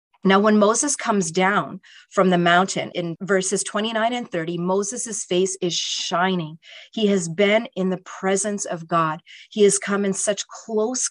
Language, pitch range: English, 180-215 Hz